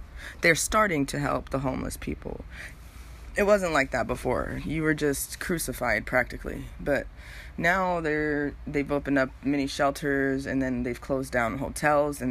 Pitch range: 120-145 Hz